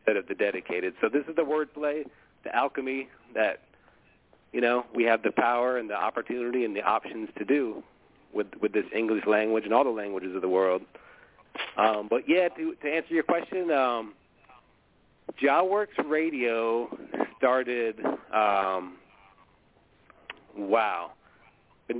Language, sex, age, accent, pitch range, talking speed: English, male, 40-59, American, 110-140 Hz, 140 wpm